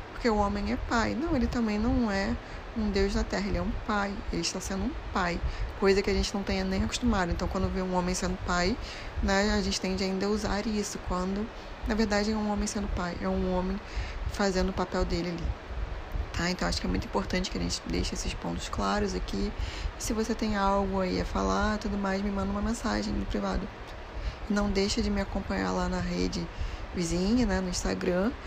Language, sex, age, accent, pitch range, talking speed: Portuguese, female, 20-39, Brazilian, 180-210 Hz, 215 wpm